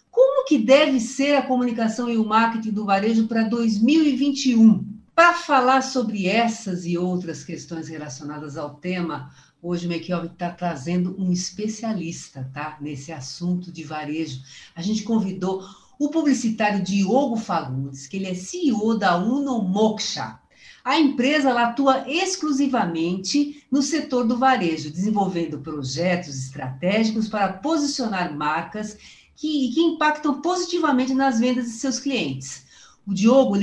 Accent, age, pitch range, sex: Brazilian, 50-69, 175-260 Hz, female